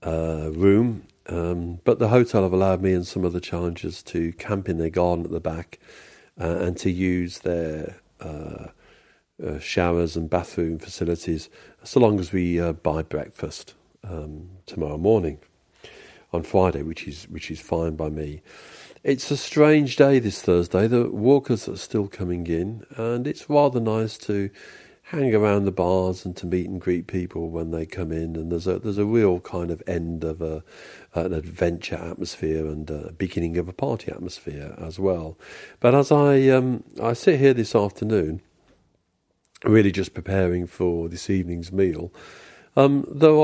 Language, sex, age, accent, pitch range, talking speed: English, male, 50-69, British, 85-105 Hz, 170 wpm